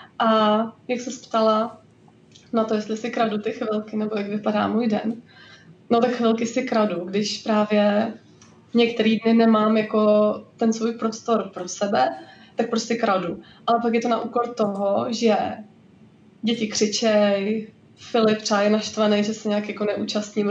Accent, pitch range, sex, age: native, 210-230 Hz, female, 20-39